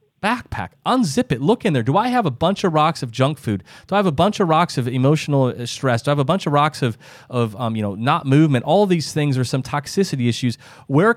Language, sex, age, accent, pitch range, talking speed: English, male, 30-49, American, 130-155 Hz, 260 wpm